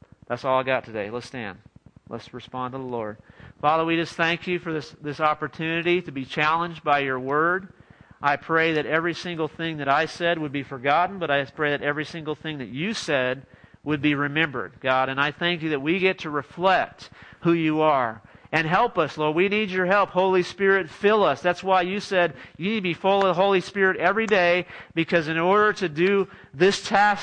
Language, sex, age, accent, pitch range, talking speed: English, male, 40-59, American, 140-180 Hz, 220 wpm